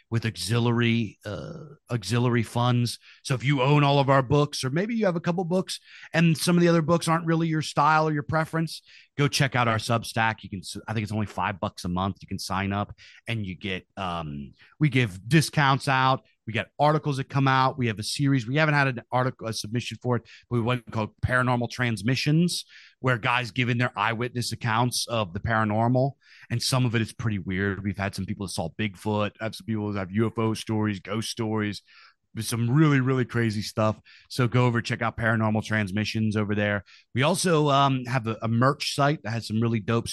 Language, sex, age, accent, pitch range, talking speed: English, male, 30-49, American, 110-140 Hz, 215 wpm